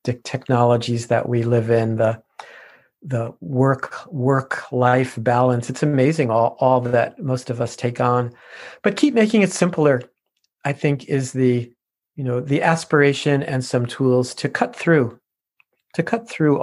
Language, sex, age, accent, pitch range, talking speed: English, male, 50-69, American, 120-145 Hz, 155 wpm